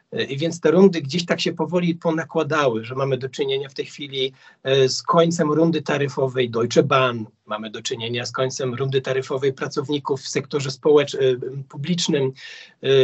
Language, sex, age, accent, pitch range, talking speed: Polish, male, 40-59, native, 130-160 Hz, 155 wpm